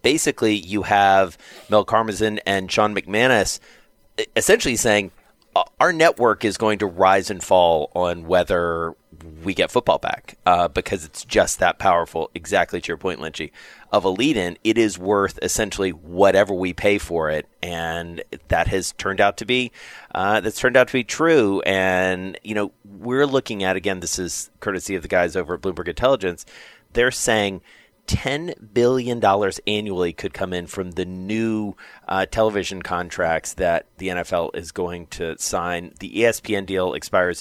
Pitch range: 90-110 Hz